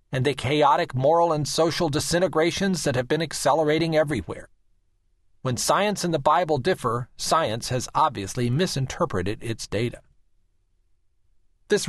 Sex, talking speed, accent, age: male, 125 wpm, American, 40-59